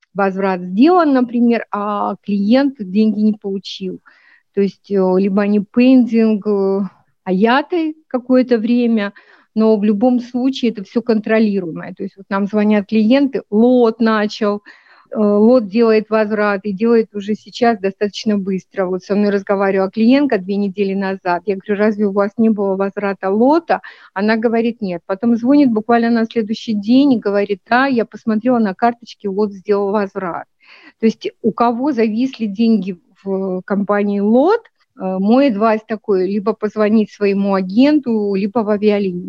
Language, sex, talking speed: Russian, female, 145 wpm